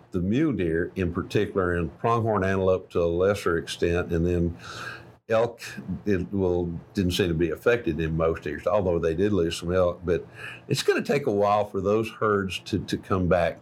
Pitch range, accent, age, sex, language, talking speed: 90-110 Hz, American, 50-69, male, English, 195 wpm